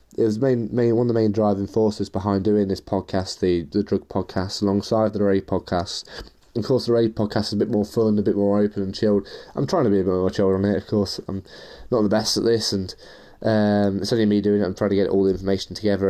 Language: English